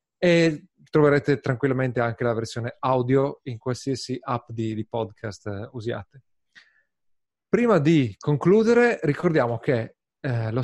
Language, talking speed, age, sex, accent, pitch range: Italian, 120 wpm, 30-49, male, native, 115-155 Hz